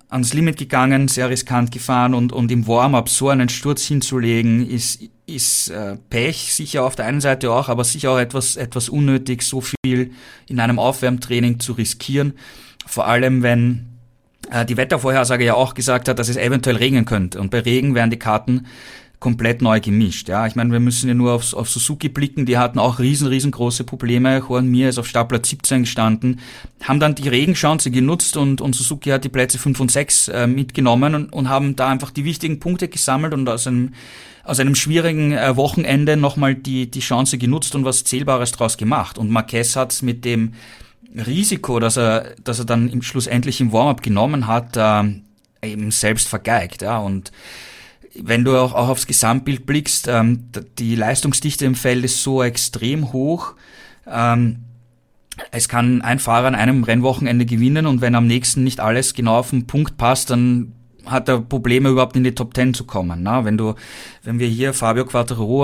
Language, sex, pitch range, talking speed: German, male, 120-135 Hz, 185 wpm